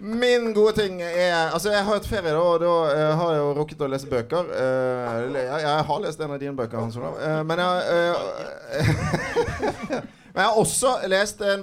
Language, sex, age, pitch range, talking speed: English, male, 30-49, 135-180 Hz, 190 wpm